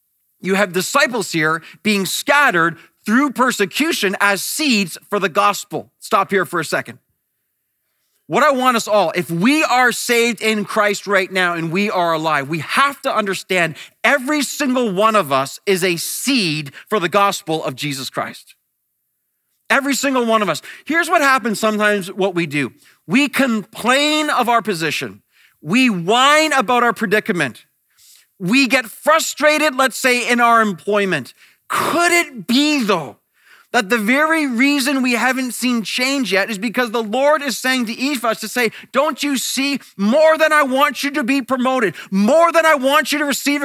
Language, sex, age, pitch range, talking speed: English, male, 40-59, 200-285 Hz, 170 wpm